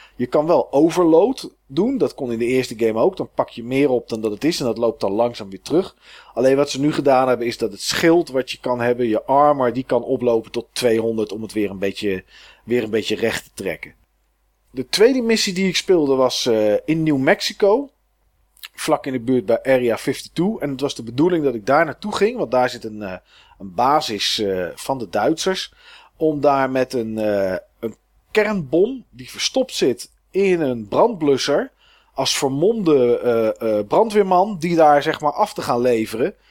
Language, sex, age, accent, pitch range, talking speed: Dutch, male, 40-59, Dutch, 115-160 Hz, 200 wpm